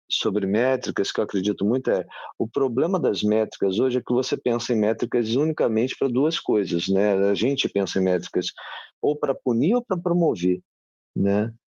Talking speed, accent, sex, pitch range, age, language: 180 wpm, Brazilian, male, 105-135 Hz, 40-59, Portuguese